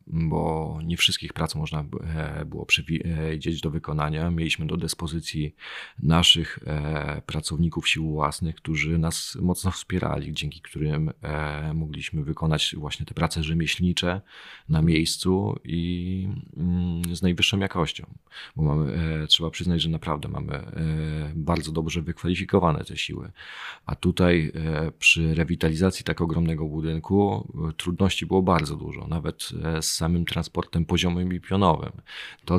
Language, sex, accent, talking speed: Polish, male, native, 135 wpm